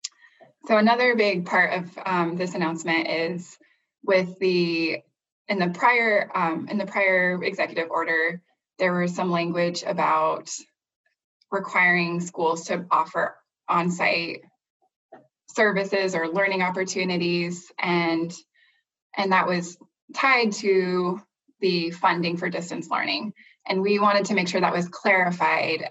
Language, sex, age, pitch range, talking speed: English, female, 20-39, 175-205 Hz, 125 wpm